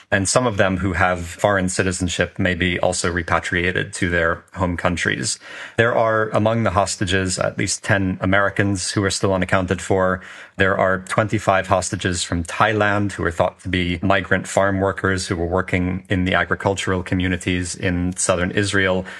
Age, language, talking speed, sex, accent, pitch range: 30-49, English, 170 wpm, male, American, 90-100 Hz